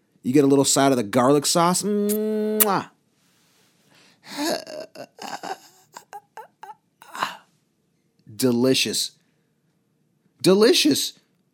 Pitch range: 115-180 Hz